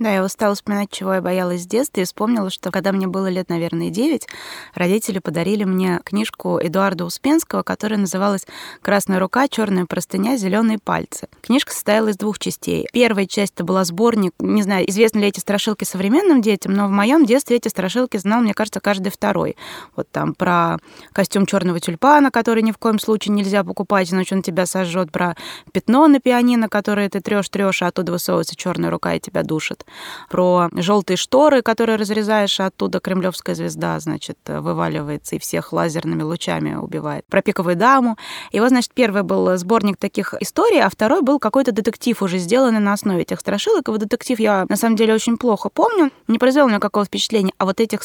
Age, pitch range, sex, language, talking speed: 20-39, 185-230 Hz, female, Russian, 185 wpm